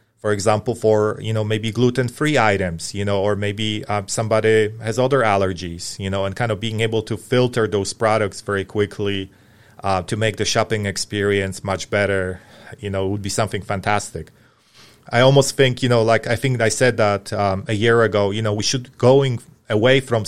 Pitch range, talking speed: 105-120 Hz, 195 wpm